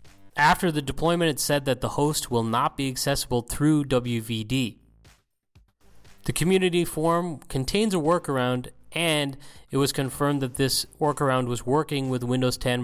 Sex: male